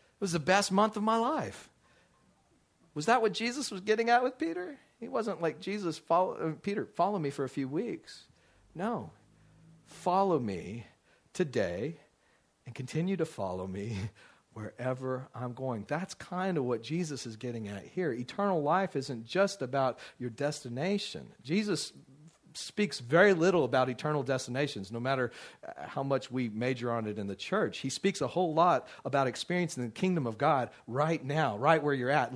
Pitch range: 130-190 Hz